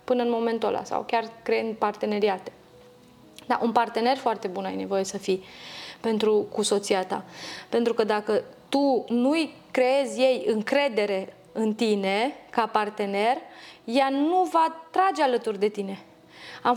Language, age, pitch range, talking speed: Romanian, 20-39, 230-310 Hz, 145 wpm